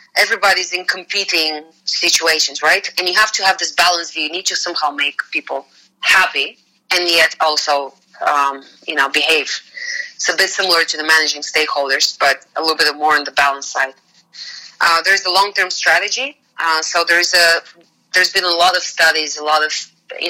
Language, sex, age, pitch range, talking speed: Bulgarian, female, 30-49, 150-175 Hz, 185 wpm